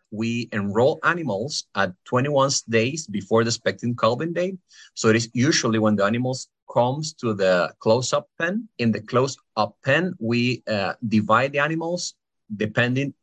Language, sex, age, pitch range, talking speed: English, male, 30-49, 105-140 Hz, 150 wpm